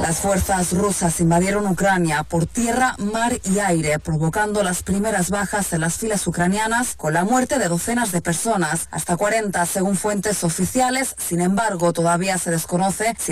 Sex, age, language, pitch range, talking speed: female, 30-49, Spanish, 175-215 Hz, 160 wpm